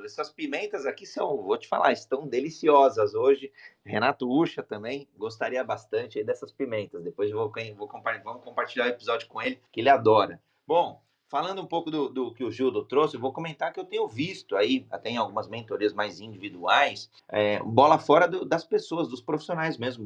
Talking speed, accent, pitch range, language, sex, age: 190 wpm, Brazilian, 125-190 Hz, Portuguese, male, 30-49